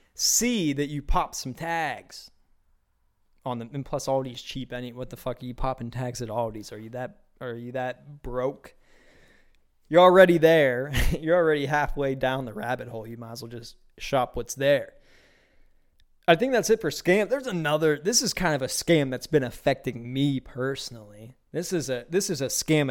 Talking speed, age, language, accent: 190 wpm, 20-39, English, American